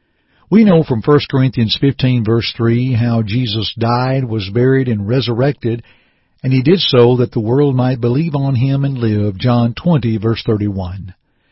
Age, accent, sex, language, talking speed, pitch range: 60-79, American, male, English, 165 wpm, 115-155 Hz